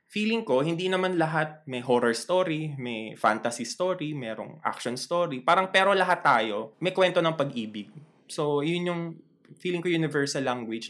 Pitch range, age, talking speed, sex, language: 125-175 Hz, 20-39, 160 wpm, male, Filipino